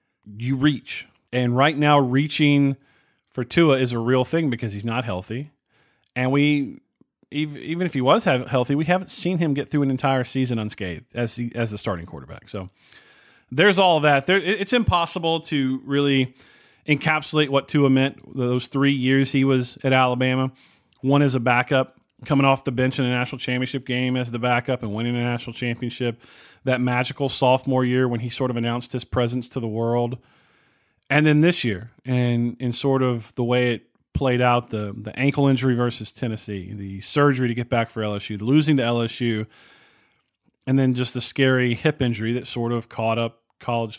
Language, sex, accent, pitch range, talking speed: English, male, American, 120-140 Hz, 185 wpm